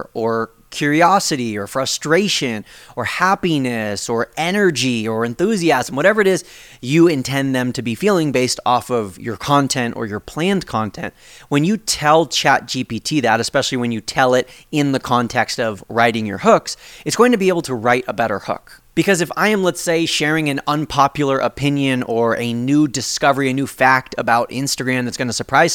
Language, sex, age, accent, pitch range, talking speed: English, male, 30-49, American, 120-145 Hz, 180 wpm